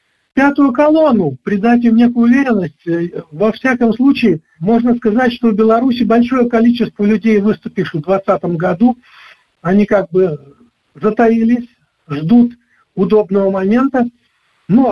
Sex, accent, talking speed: male, native, 115 wpm